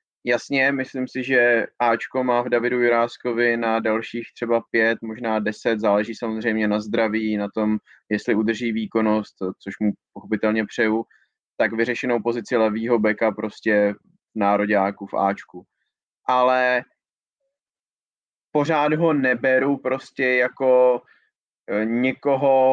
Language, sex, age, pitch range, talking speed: Czech, male, 20-39, 110-130 Hz, 120 wpm